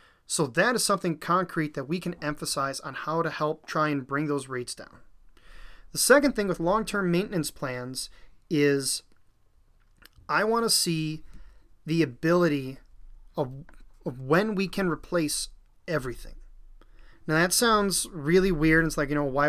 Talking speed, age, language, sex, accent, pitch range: 150 wpm, 30-49, English, male, American, 145-175 Hz